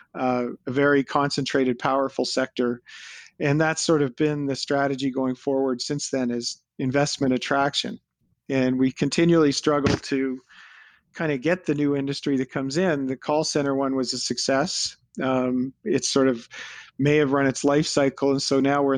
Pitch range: 130-150 Hz